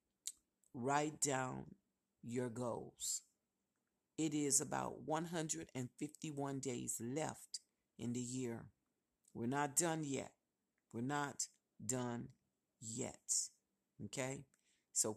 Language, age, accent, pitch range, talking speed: English, 50-69, American, 135-175 Hz, 90 wpm